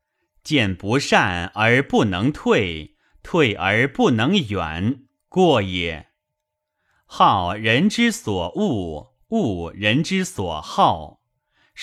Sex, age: male, 30-49